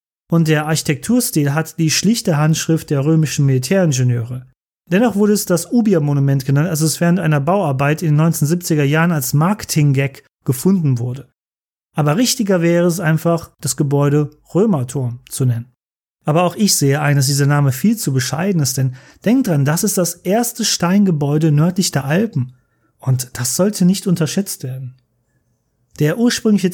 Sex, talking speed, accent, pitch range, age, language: male, 155 wpm, German, 140-180 Hz, 30-49, German